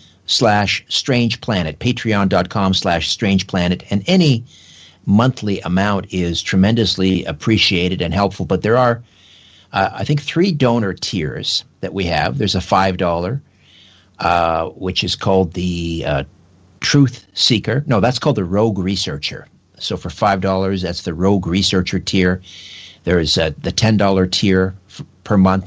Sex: male